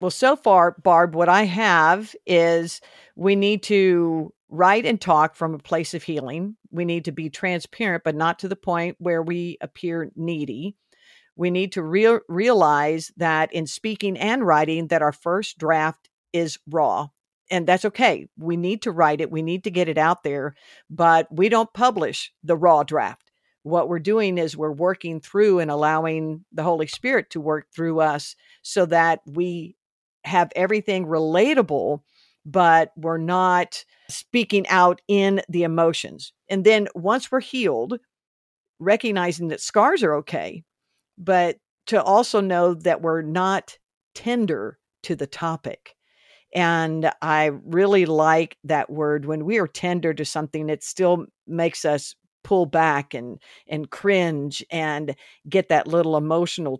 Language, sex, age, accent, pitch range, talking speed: English, female, 50-69, American, 160-195 Hz, 155 wpm